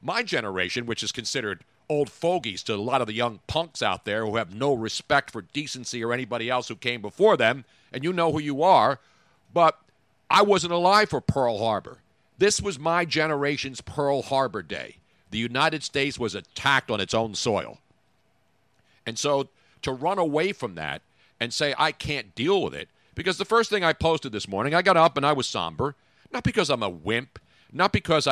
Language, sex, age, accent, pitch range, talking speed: English, male, 50-69, American, 110-165 Hz, 200 wpm